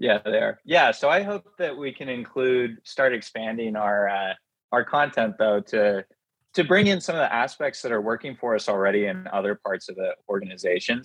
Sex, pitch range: male, 105-145 Hz